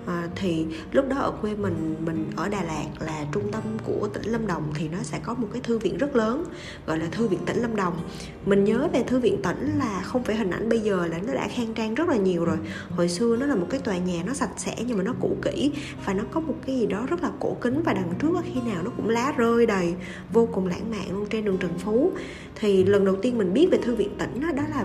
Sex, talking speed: female, 285 wpm